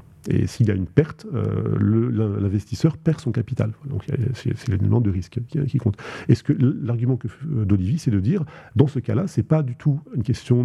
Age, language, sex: 40-59, French, male